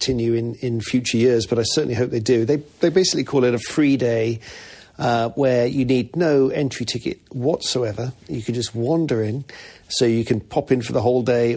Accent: British